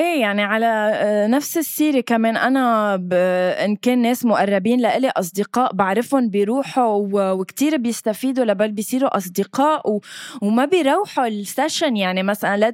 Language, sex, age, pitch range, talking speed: Arabic, female, 20-39, 205-275 Hz, 115 wpm